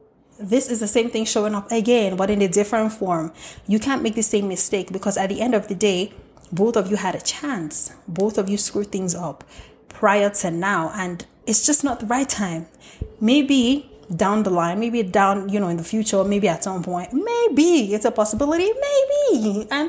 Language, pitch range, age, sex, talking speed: English, 190-235 Hz, 20-39, female, 210 wpm